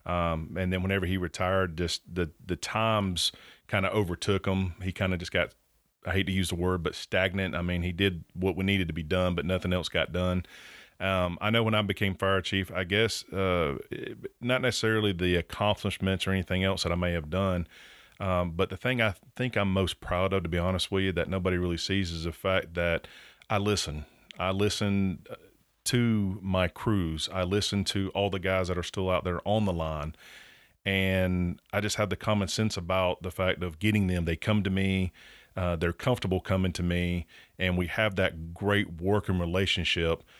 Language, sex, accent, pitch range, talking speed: English, male, American, 90-95 Hz, 205 wpm